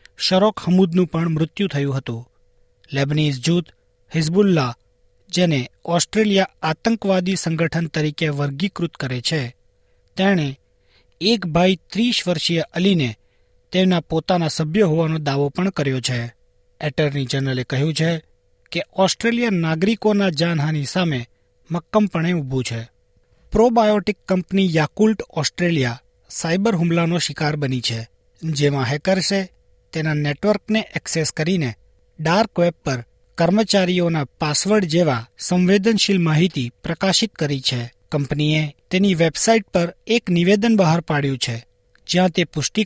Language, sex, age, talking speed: Gujarati, male, 40-59, 115 wpm